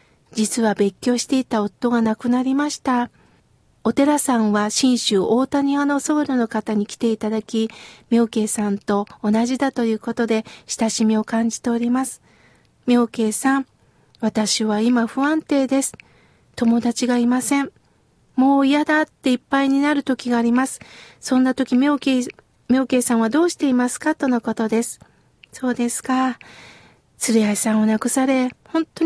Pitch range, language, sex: 230-290 Hz, Japanese, female